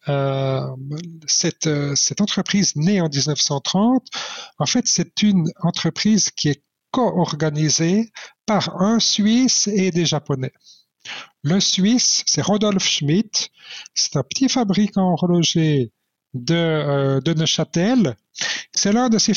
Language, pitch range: French, 150-205 Hz